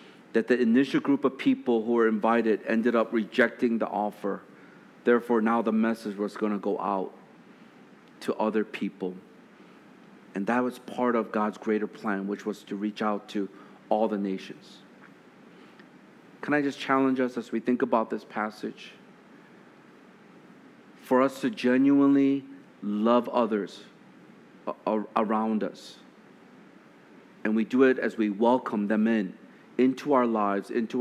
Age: 40-59